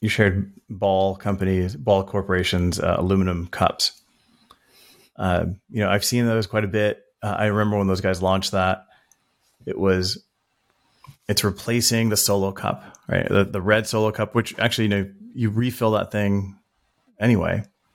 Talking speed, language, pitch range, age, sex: 165 wpm, English, 95-105 Hz, 30-49, male